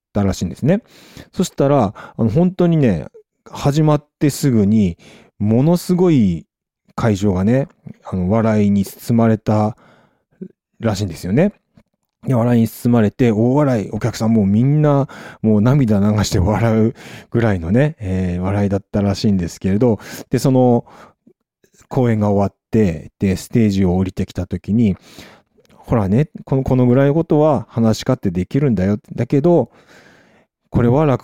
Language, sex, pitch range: Japanese, male, 100-130 Hz